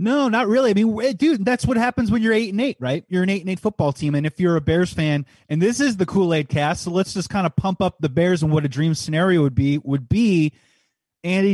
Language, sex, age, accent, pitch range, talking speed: English, male, 30-49, American, 150-185 Hz, 260 wpm